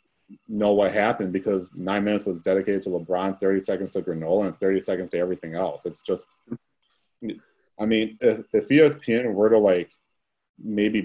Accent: American